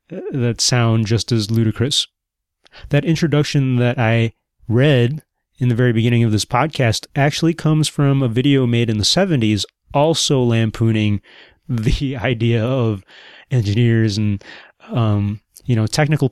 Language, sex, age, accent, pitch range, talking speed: English, male, 30-49, American, 115-140 Hz, 135 wpm